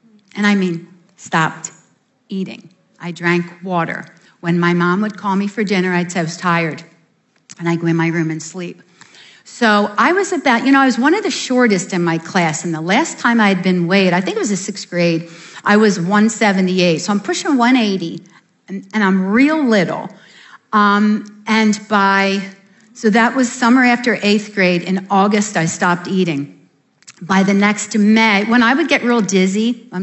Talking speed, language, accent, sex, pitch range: 195 wpm, English, American, female, 175-220 Hz